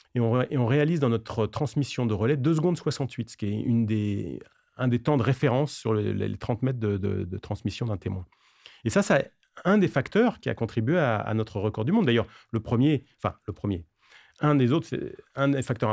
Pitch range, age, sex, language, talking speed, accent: 115-155 Hz, 40-59, male, French, 235 wpm, French